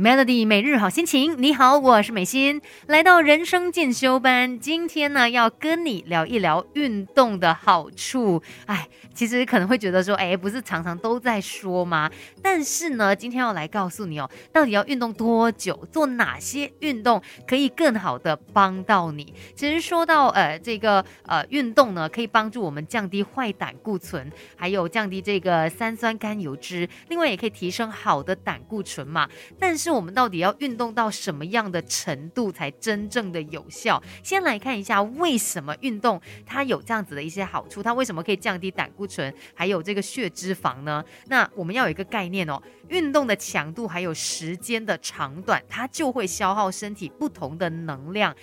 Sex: female